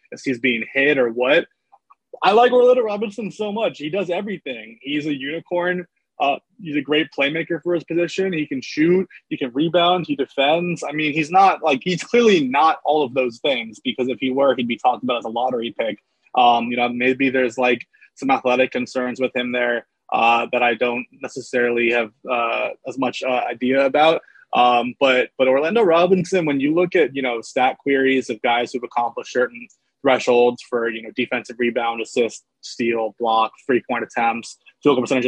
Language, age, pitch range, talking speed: English, 20-39, 120-160 Hz, 195 wpm